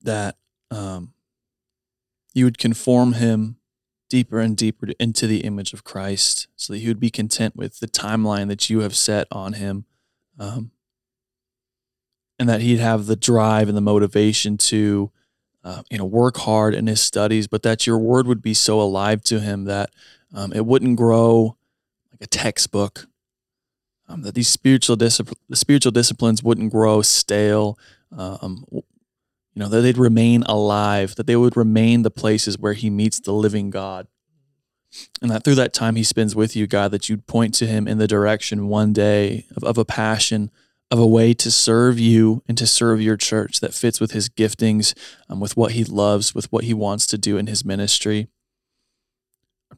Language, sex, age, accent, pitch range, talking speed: English, male, 20-39, American, 105-115 Hz, 185 wpm